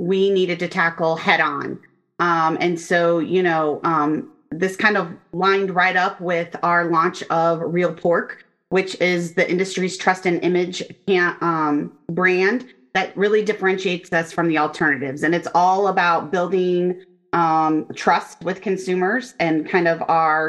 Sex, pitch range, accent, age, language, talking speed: female, 165-190 Hz, American, 30-49, English, 155 wpm